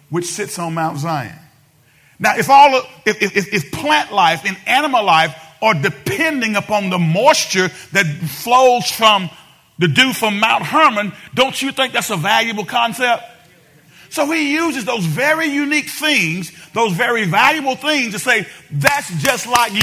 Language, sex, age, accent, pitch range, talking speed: English, male, 40-59, American, 150-240 Hz, 155 wpm